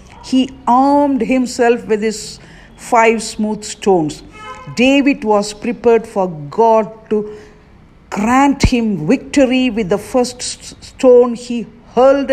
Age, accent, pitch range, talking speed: 50-69, Indian, 190-250 Hz, 110 wpm